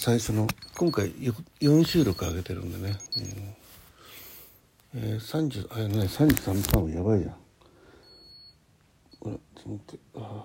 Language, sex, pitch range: Japanese, male, 90-120 Hz